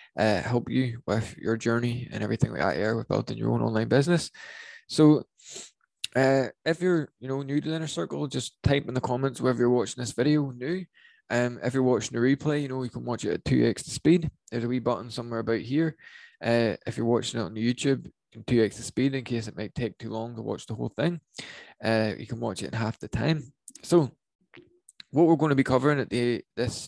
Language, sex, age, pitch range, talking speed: English, male, 20-39, 115-140 Hz, 235 wpm